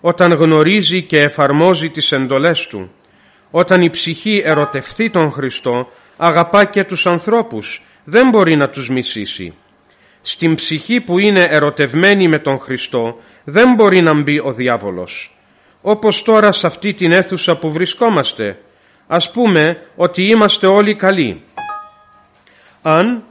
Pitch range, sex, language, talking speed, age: 145-200 Hz, male, Greek, 130 wpm, 40-59